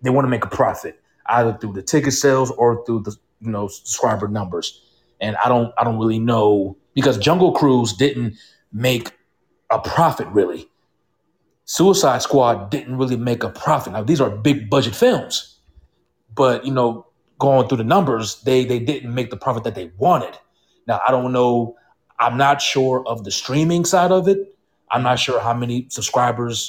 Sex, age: male, 30-49